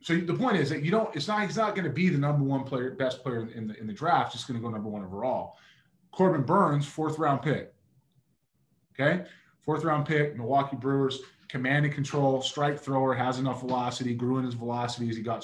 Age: 20-39